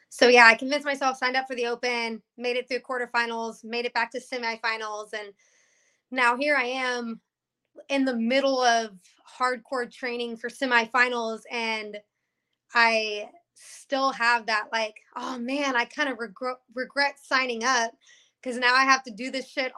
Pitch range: 230-265 Hz